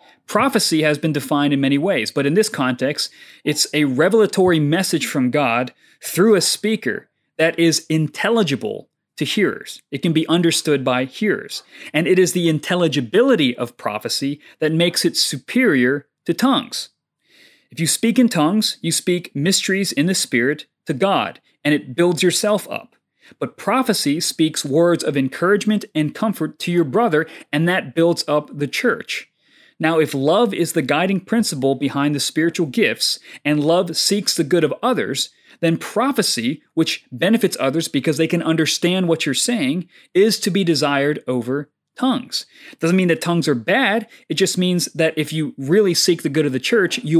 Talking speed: 170 wpm